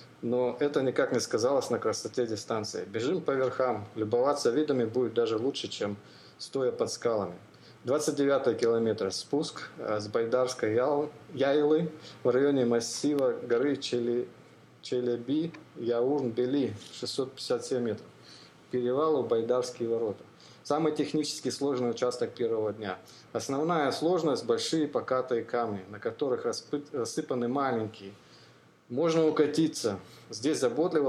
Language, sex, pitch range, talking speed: Russian, male, 120-155 Hz, 115 wpm